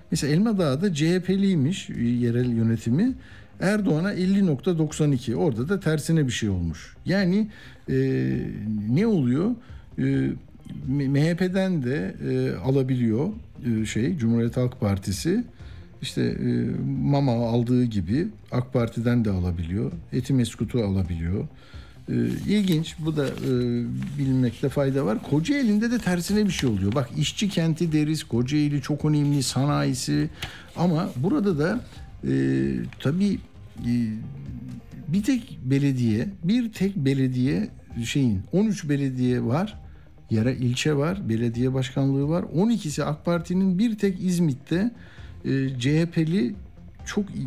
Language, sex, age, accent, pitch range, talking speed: Turkish, male, 60-79, native, 115-170 Hz, 115 wpm